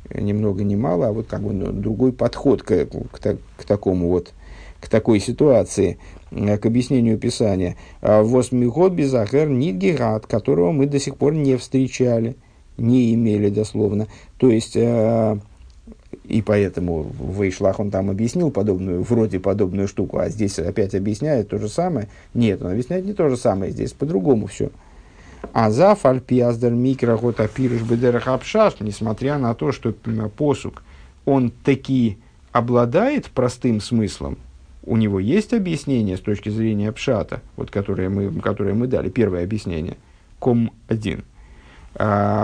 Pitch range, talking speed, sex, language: 100-125 Hz, 135 wpm, male, Russian